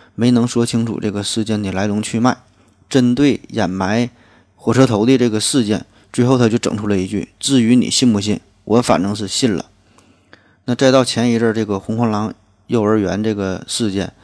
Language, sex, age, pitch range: Chinese, male, 20-39, 100-120 Hz